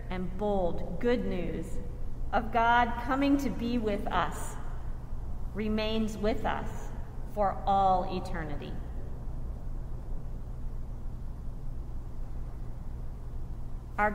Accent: American